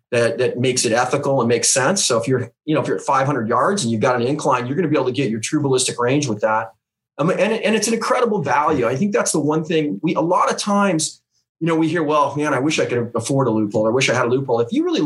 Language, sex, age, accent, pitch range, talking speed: English, male, 30-49, American, 120-160 Hz, 305 wpm